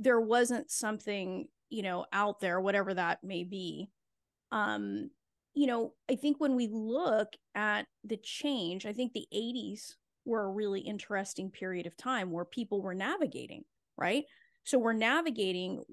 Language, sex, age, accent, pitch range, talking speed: English, female, 30-49, American, 195-240 Hz, 155 wpm